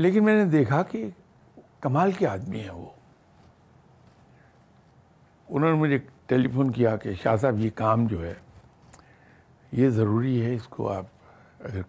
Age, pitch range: 60-79, 115-150 Hz